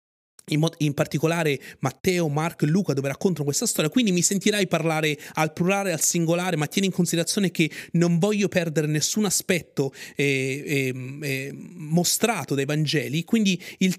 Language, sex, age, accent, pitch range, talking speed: Italian, male, 30-49, native, 150-200 Hz, 165 wpm